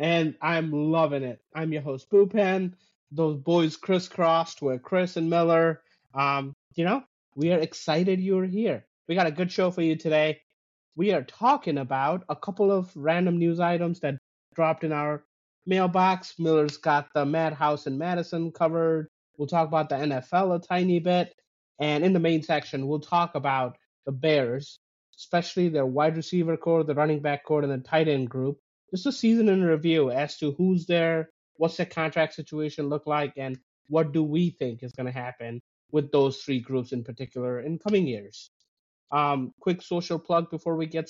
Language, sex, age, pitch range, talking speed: English, male, 30-49, 145-175 Hz, 180 wpm